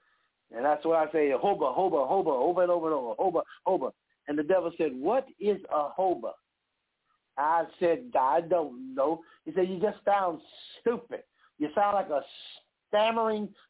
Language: English